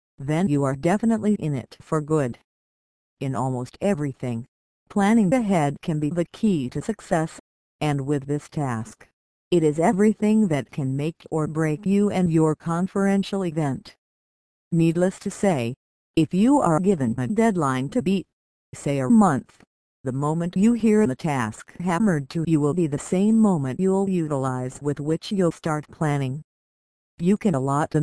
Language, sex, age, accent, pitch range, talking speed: English, female, 50-69, American, 140-195 Hz, 160 wpm